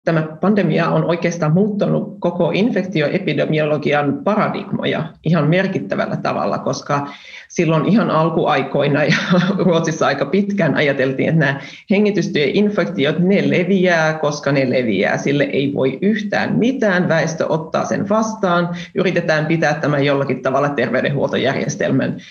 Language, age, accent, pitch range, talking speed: Finnish, 30-49, native, 155-205 Hz, 115 wpm